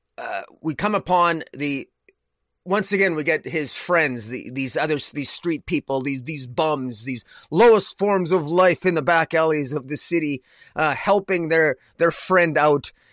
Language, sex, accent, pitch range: English, male, American, 140-180 Hz